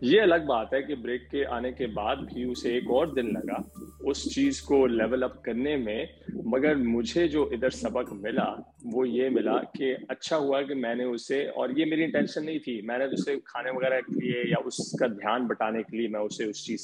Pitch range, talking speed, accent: 120-175 Hz, 210 wpm, Indian